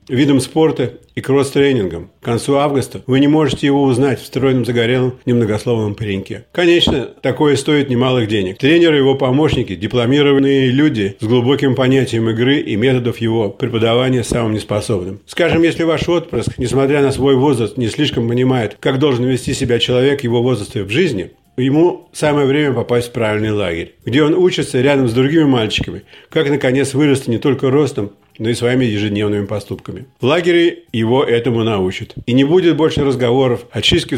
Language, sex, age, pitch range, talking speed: Russian, male, 50-69, 120-140 Hz, 165 wpm